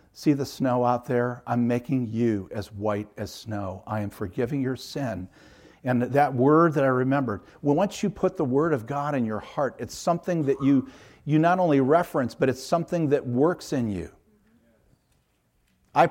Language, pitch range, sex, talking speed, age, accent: English, 110-145 Hz, male, 185 wpm, 50-69, American